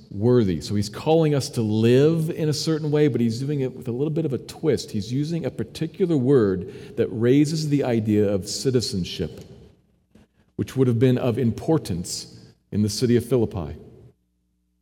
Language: English